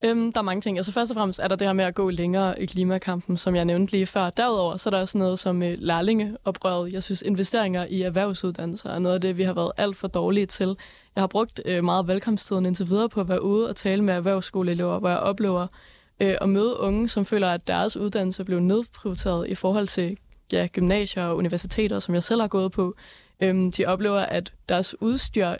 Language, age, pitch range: Danish, 20-39, 180-205 Hz